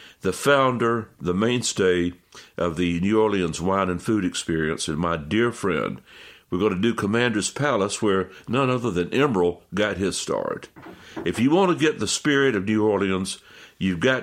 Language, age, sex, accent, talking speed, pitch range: English, 60-79, male, American, 175 wpm, 95-125 Hz